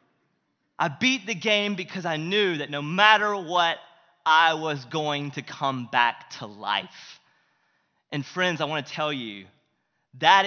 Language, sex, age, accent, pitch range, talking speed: English, male, 30-49, American, 180-275 Hz, 155 wpm